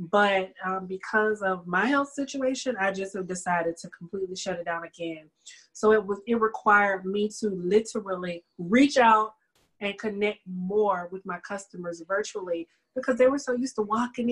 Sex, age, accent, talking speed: female, 30-49, American, 170 wpm